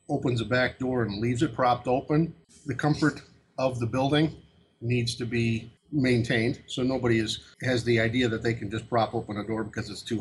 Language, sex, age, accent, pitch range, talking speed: English, male, 50-69, American, 115-140 Hz, 205 wpm